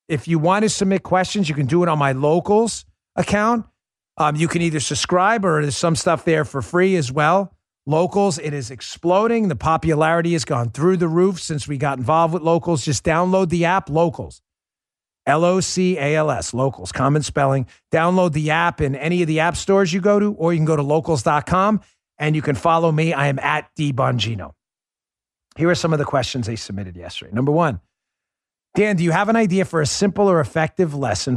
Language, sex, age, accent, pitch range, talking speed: English, male, 40-59, American, 120-170 Hz, 200 wpm